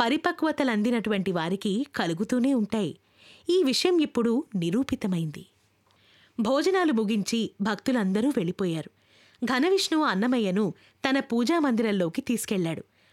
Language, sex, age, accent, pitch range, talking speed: Telugu, female, 20-39, native, 205-330 Hz, 80 wpm